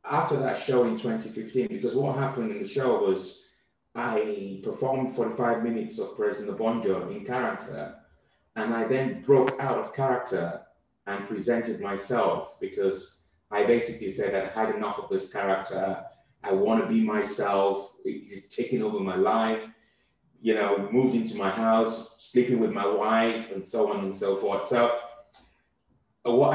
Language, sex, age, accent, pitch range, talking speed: English, male, 30-49, British, 100-125 Hz, 160 wpm